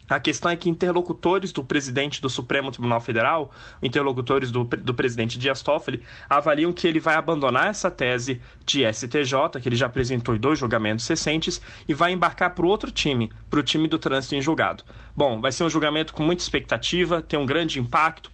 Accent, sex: Brazilian, male